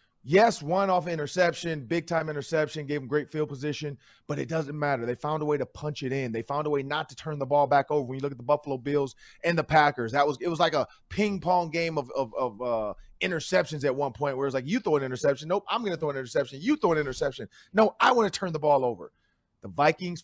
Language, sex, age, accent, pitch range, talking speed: English, male, 30-49, American, 135-180 Hz, 270 wpm